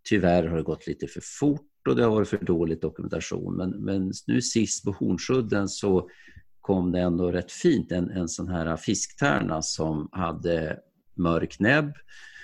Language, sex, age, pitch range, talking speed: Swedish, male, 50-69, 85-105 Hz, 170 wpm